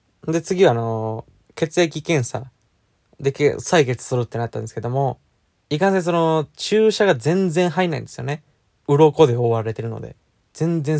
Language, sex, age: Japanese, male, 20-39